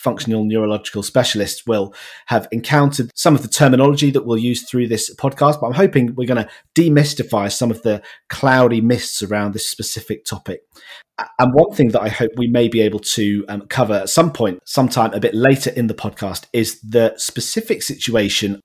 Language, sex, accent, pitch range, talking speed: English, male, British, 105-130 Hz, 190 wpm